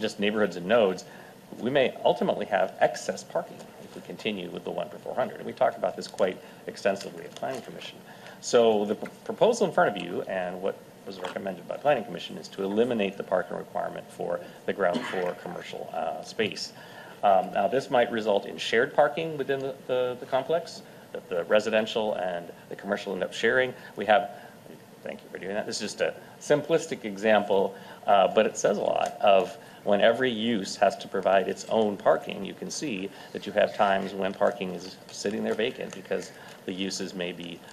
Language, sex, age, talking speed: English, male, 40-59, 195 wpm